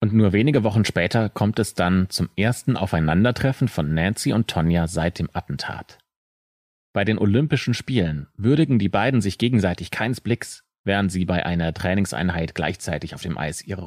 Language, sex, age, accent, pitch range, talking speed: German, male, 30-49, German, 90-120 Hz, 170 wpm